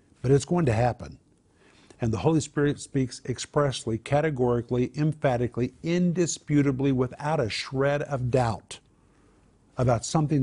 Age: 50-69